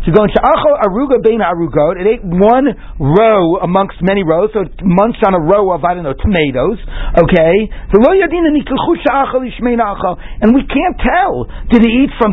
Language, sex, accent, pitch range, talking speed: English, male, American, 175-260 Hz, 130 wpm